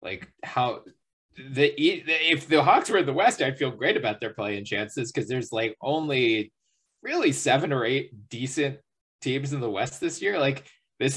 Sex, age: male, 20-39